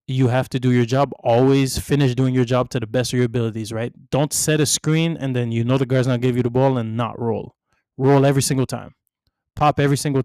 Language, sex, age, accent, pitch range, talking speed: English, male, 20-39, American, 120-150 Hz, 250 wpm